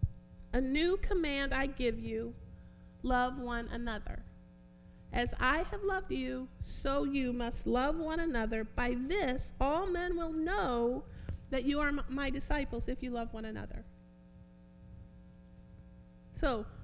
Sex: female